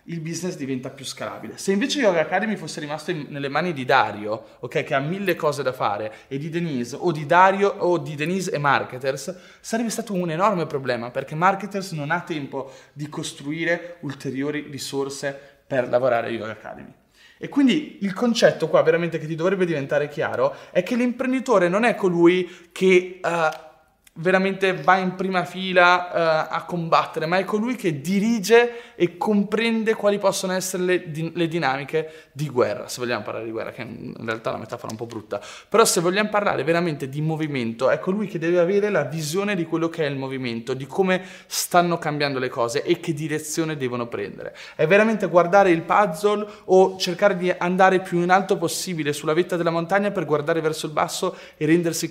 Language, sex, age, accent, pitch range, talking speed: Italian, male, 20-39, native, 145-185 Hz, 190 wpm